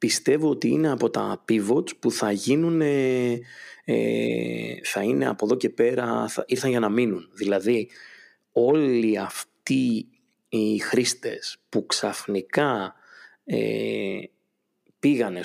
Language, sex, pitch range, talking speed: Greek, male, 105-125 Hz, 100 wpm